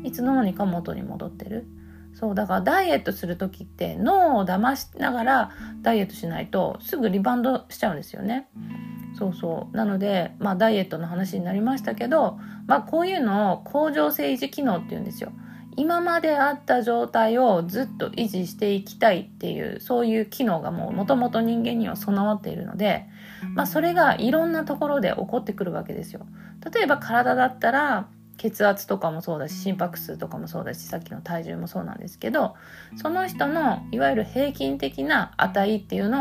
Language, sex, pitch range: Japanese, female, 185-250 Hz